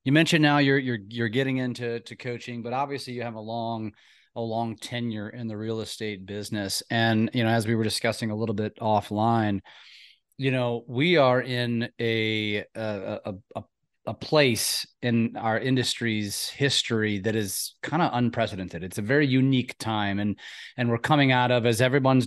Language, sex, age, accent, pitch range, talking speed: English, male, 30-49, American, 115-135 Hz, 185 wpm